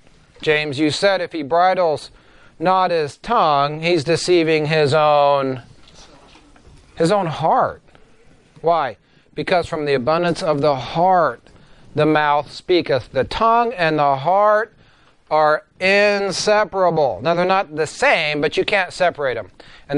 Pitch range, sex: 150-210 Hz, male